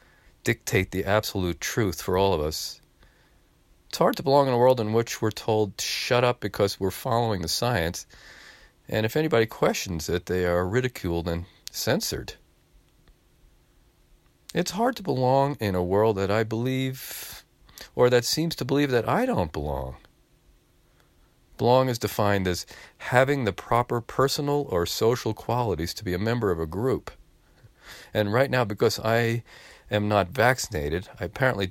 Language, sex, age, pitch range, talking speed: English, male, 40-59, 90-125 Hz, 155 wpm